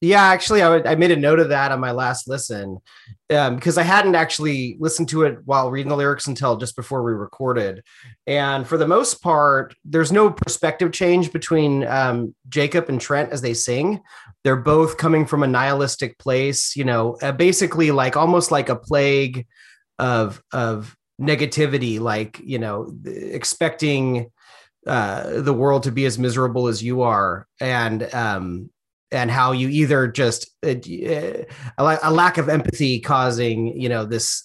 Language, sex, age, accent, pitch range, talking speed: English, male, 30-49, American, 125-160 Hz, 165 wpm